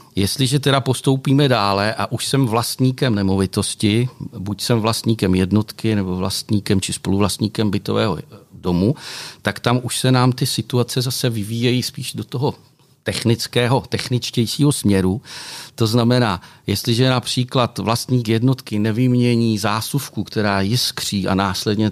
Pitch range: 95-115 Hz